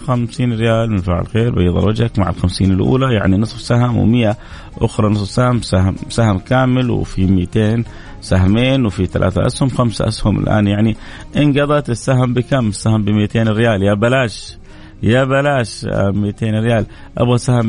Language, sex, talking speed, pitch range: Arabic, male, 155 wpm, 105-135 Hz